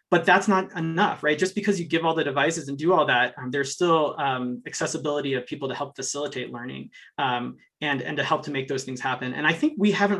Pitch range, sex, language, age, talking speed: 135-170 Hz, male, English, 30-49, 245 wpm